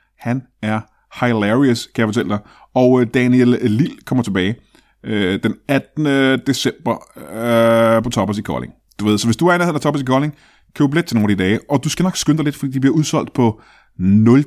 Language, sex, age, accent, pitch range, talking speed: Danish, male, 30-49, native, 110-145 Hz, 215 wpm